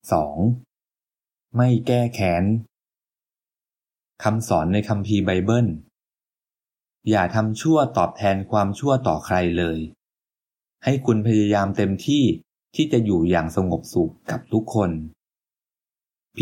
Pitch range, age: 95-120 Hz, 20-39